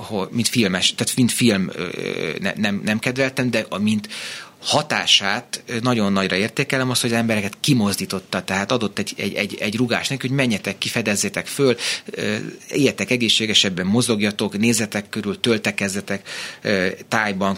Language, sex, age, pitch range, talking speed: Hungarian, male, 30-49, 100-135 Hz, 135 wpm